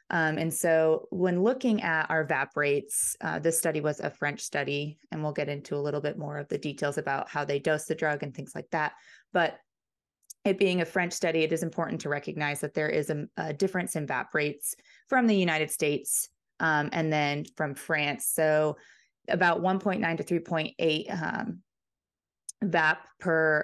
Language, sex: English, female